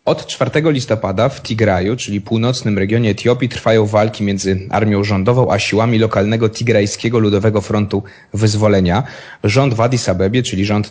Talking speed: 150 wpm